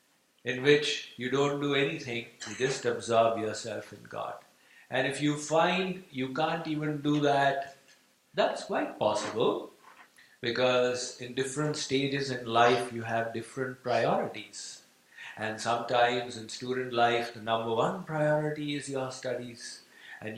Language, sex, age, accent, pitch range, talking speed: English, male, 50-69, Indian, 120-140 Hz, 140 wpm